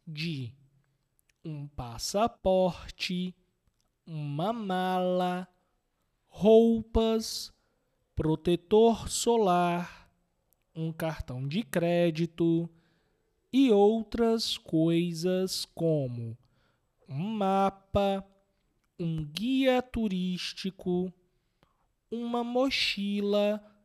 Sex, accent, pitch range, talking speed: male, Brazilian, 150-225 Hz, 60 wpm